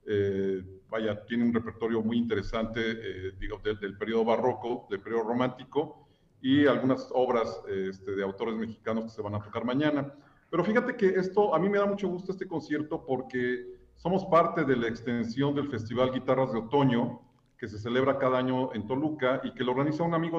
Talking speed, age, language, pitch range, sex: 195 wpm, 40-59, Spanish, 115-150 Hz, male